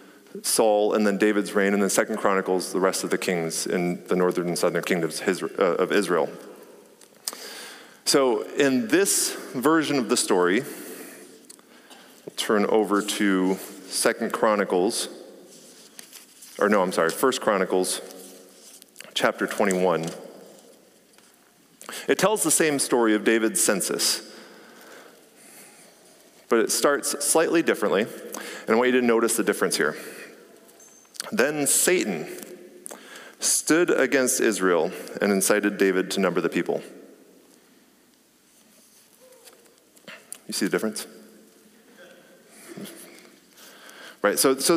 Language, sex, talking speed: English, male, 115 wpm